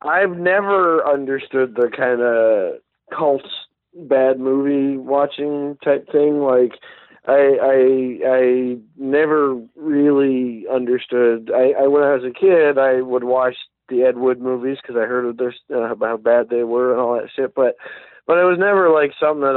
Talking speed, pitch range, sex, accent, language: 160 wpm, 120-145 Hz, male, American, English